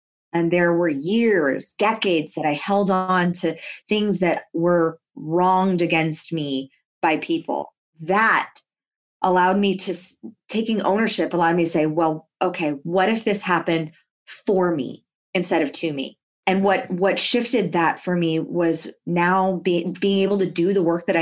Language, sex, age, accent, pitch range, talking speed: English, female, 20-39, American, 170-200 Hz, 160 wpm